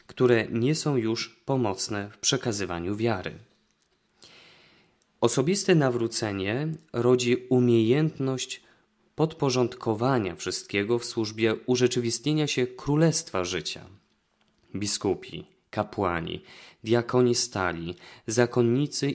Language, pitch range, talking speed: Polish, 110-130 Hz, 80 wpm